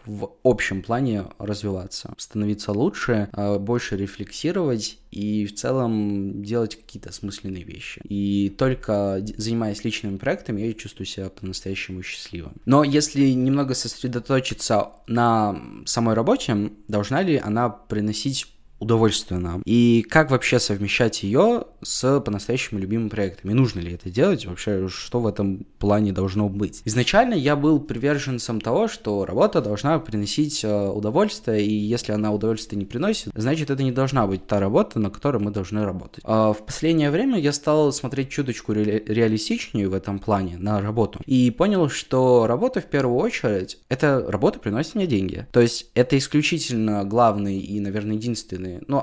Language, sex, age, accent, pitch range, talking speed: Russian, male, 20-39, native, 100-130 Hz, 150 wpm